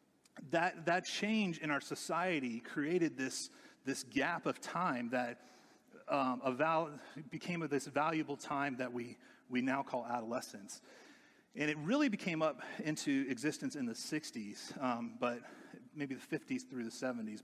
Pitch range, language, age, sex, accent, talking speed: 125-170 Hz, English, 30-49, male, American, 155 wpm